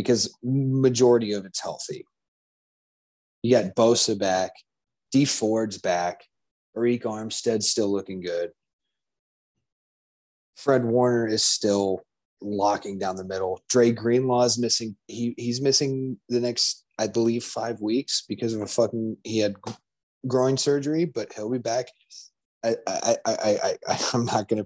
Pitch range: 100-125 Hz